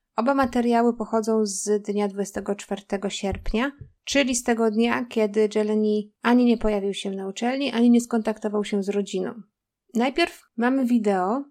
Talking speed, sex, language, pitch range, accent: 145 wpm, female, Polish, 210-250 Hz, native